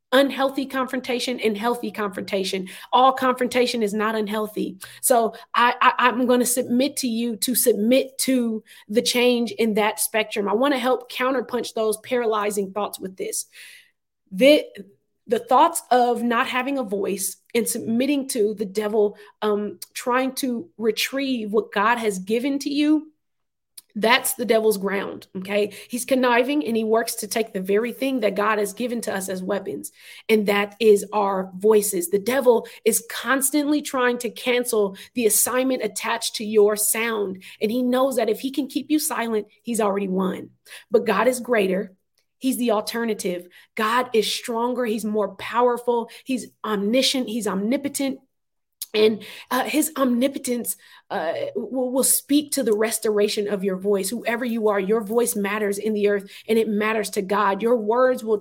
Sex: female